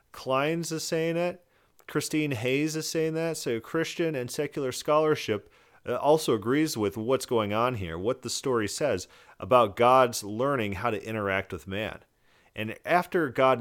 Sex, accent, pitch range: male, American, 100-135 Hz